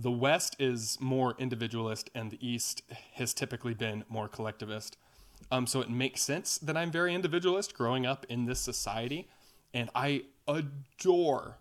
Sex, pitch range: male, 120-145 Hz